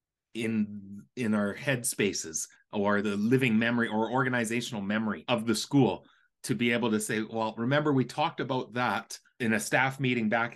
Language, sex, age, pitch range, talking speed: English, male, 30-49, 110-130 Hz, 170 wpm